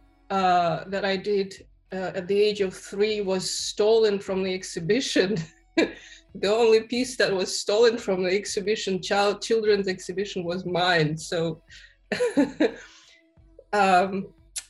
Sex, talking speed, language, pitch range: female, 125 wpm, English, 185-220 Hz